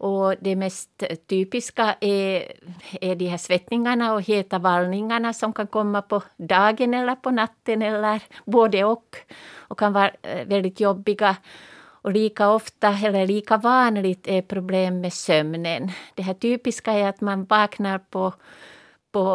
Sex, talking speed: female, 145 wpm